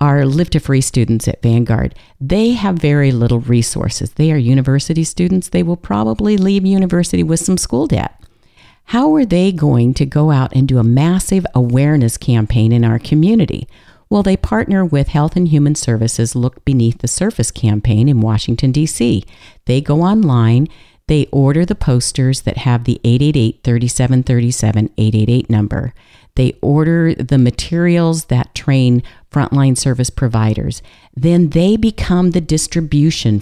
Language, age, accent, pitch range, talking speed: English, 50-69, American, 120-160 Hz, 150 wpm